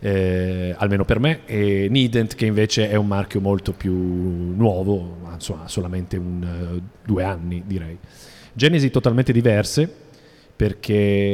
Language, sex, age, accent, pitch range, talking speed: Italian, male, 40-59, native, 100-120 Hz, 130 wpm